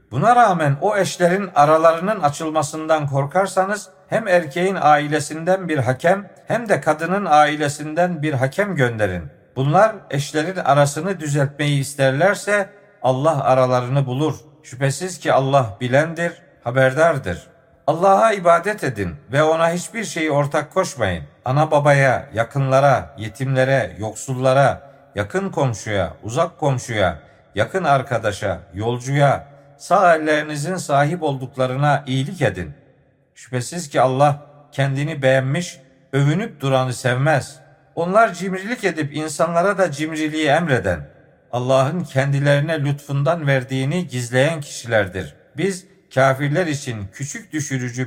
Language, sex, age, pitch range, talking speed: Turkish, male, 50-69, 130-170 Hz, 105 wpm